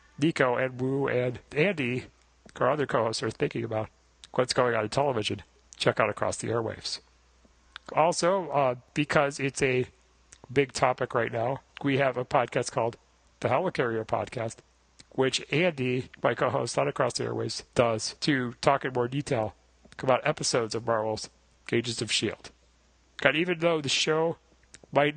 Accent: American